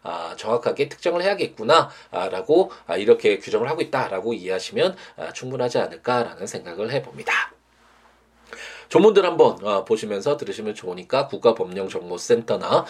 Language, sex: Korean, male